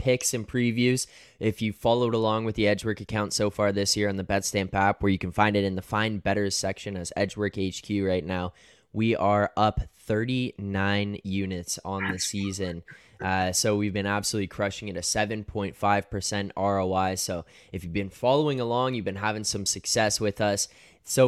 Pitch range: 95-110 Hz